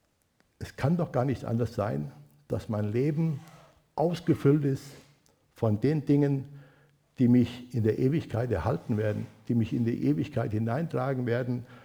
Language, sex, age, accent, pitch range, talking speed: German, male, 60-79, German, 110-135 Hz, 145 wpm